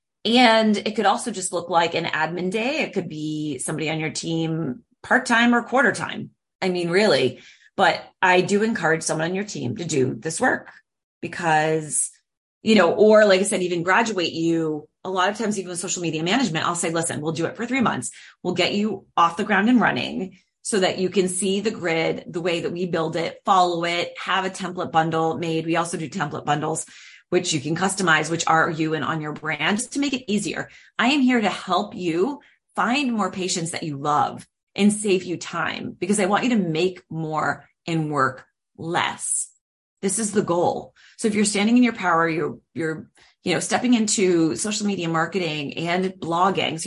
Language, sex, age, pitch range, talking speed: English, female, 30-49, 160-205 Hz, 205 wpm